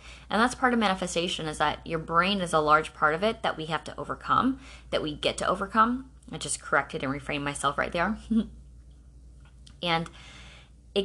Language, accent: English, American